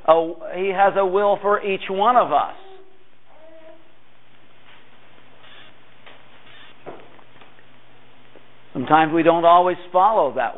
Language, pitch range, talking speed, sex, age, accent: English, 170-220 Hz, 85 wpm, male, 50-69, American